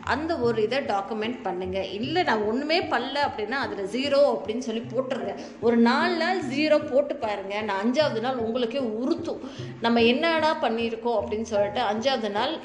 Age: 20-39